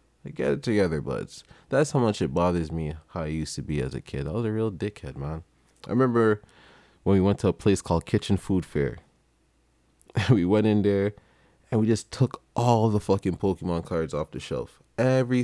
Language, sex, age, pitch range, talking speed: English, male, 20-39, 85-105 Hz, 210 wpm